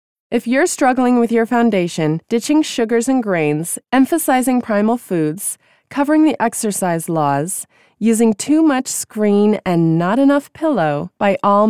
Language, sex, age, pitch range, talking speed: English, female, 20-39, 185-260 Hz, 140 wpm